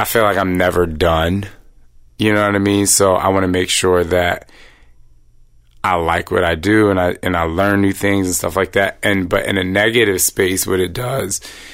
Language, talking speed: English, 220 wpm